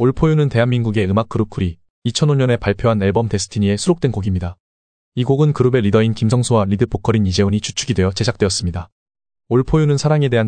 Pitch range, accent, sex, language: 100-125 Hz, native, male, Korean